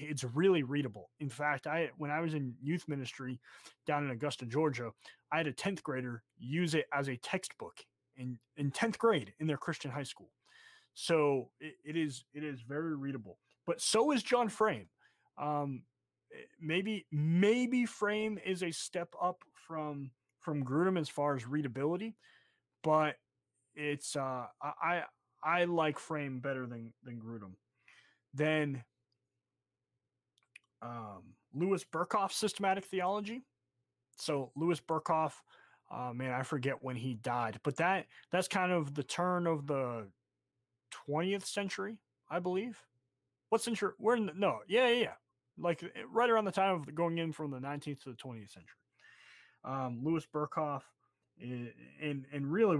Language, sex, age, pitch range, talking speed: English, male, 20-39, 130-175 Hz, 150 wpm